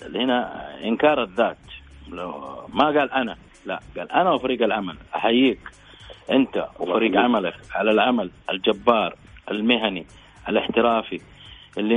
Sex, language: male, Arabic